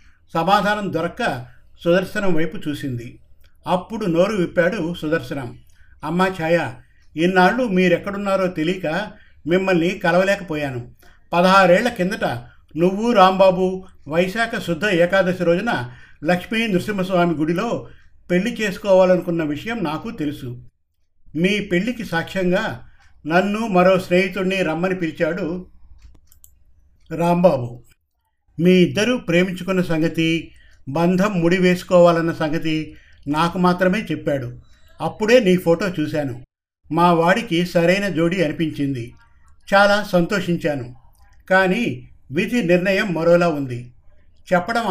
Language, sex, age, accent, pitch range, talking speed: Telugu, male, 50-69, native, 150-185 Hz, 90 wpm